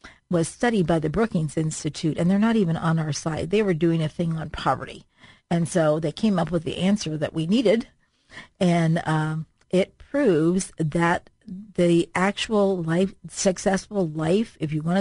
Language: English